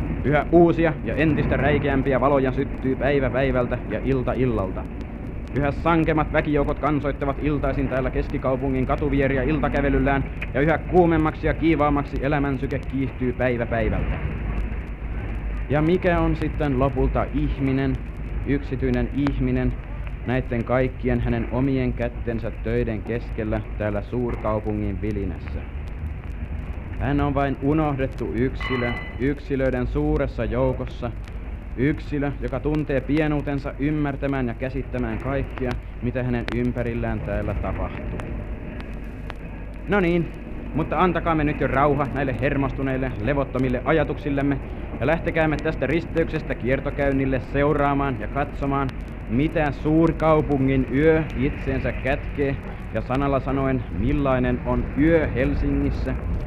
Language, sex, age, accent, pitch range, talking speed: Finnish, male, 30-49, native, 120-145 Hz, 110 wpm